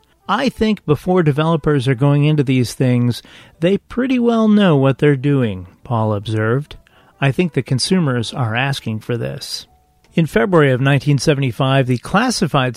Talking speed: 150 wpm